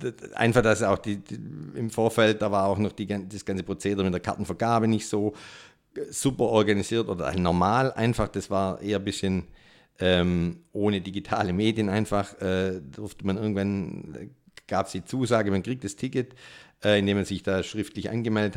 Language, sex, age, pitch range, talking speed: German, male, 50-69, 95-110 Hz, 180 wpm